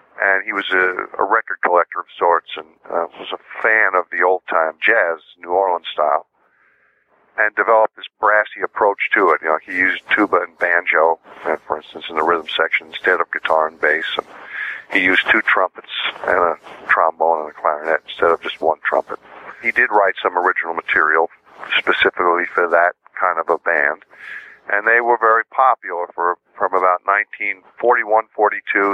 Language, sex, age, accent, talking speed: English, male, 50-69, American, 180 wpm